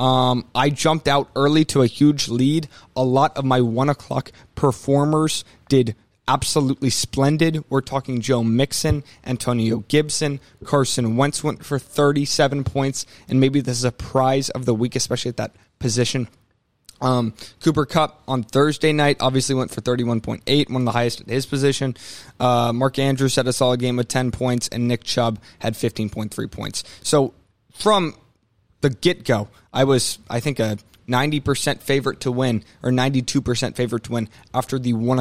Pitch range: 115-135 Hz